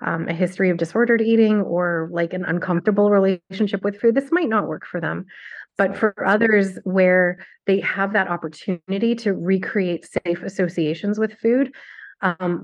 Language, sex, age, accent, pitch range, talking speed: English, female, 30-49, American, 175-205 Hz, 160 wpm